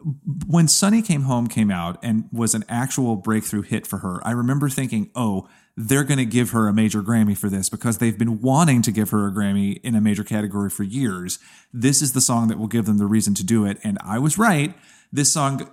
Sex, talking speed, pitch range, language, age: male, 235 wpm, 110-140 Hz, English, 30-49